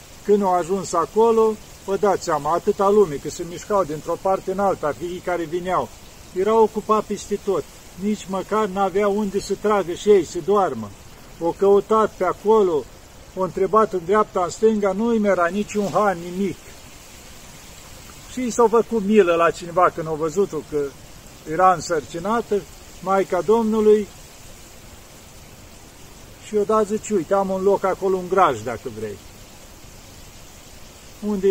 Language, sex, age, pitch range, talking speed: Romanian, male, 50-69, 165-205 Hz, 145 wpm